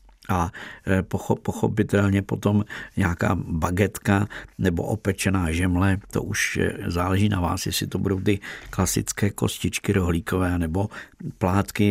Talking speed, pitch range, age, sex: 110 wpm, 95-110 Hz, 50-69, male